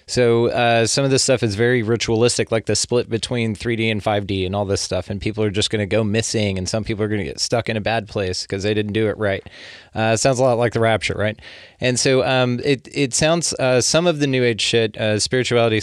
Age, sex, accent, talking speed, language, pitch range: 20-39, male, American, 260 wpm, English, 105-125 Hz